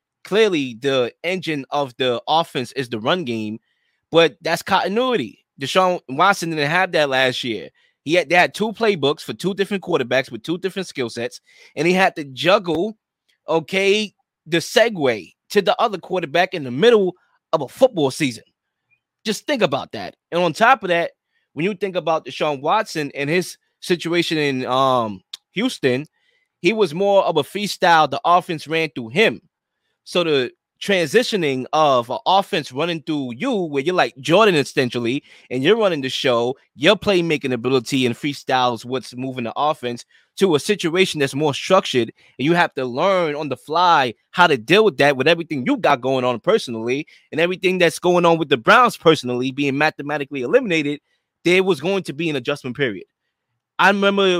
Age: 20-39